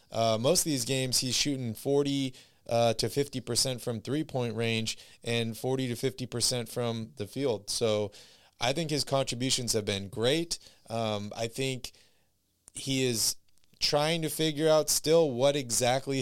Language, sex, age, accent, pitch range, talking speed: English, male, 20-39, American, 110-130 Hz, 165 wpm